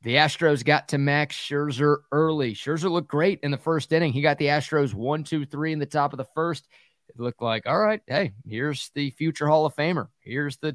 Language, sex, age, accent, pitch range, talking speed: English, male, 30-49, American, 125-150 Hz, 230 wpm